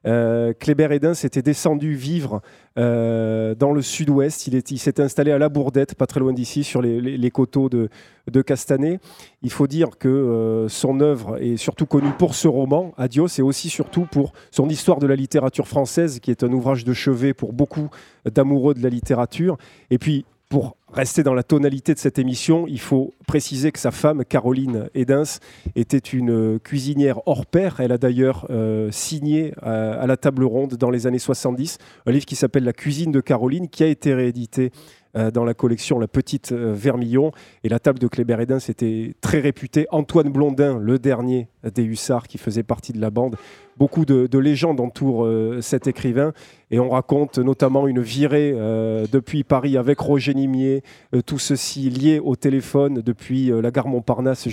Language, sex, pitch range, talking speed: French, male, 120-145 Hz, 185 wpm